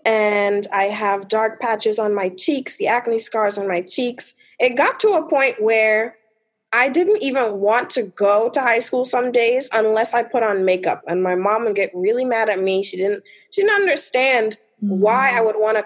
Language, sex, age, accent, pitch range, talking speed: English, female, 20-39, American, 205-265 Hz, 210 wpm